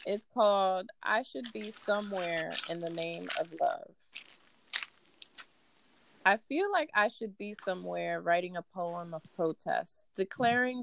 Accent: American